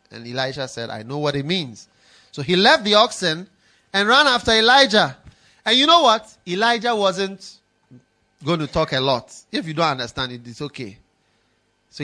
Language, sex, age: English, male, 30-49